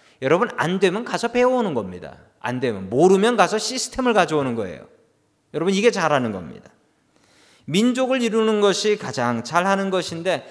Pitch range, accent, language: 140-215 Hz, native, Korean